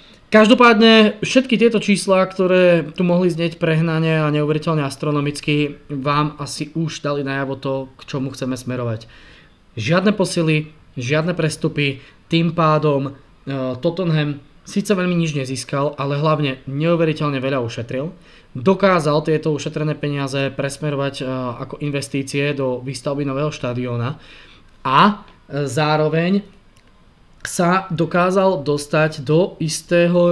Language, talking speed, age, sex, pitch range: Slovak, 110 wpm, 20-39, male, 135-165 Hz